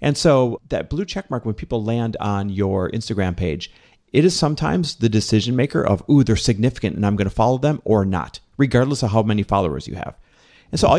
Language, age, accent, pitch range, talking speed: English, 40-59, American, 105-160 Hz, 225 wpm